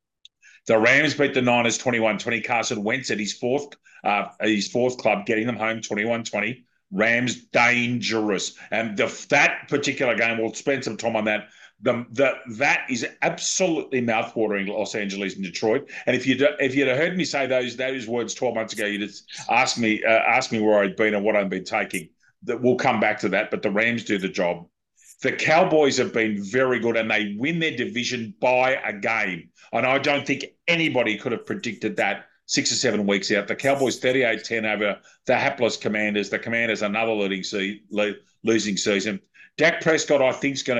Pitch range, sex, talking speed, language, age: 105-135 Hz, male, 190 wpm, English, 40-59